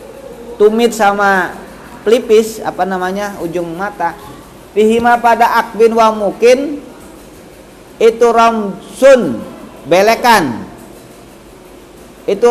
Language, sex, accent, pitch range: Indonesian, male, native, 190-230 Hz